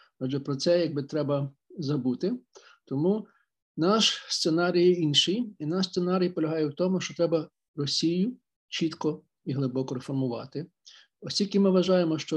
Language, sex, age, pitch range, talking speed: Ukrainian, male, 50-69, 145-175 Hz, 130 wpm